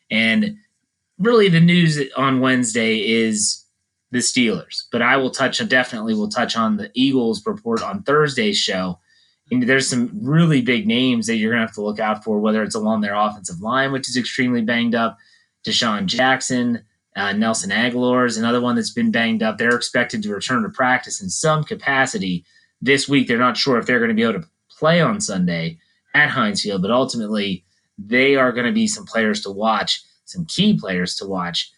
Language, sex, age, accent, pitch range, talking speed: English, male, 30-49, American, 115-185 Hz, 200 wpm